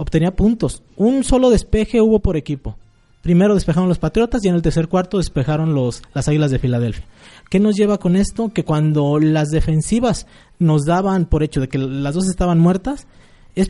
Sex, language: male, Spanish